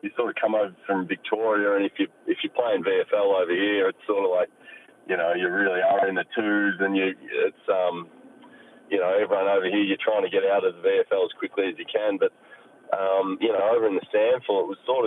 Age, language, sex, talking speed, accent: 20-39, English, male, 245 wpm, Australian